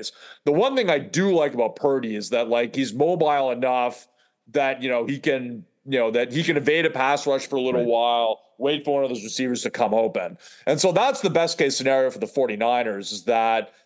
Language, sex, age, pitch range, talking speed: English, male, 30-49, 120-150 Hz, 230 wpm